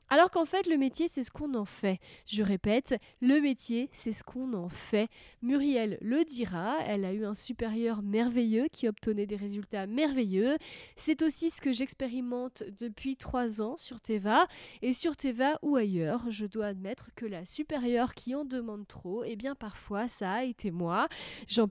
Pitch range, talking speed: 220-280 Hz, 180 wpm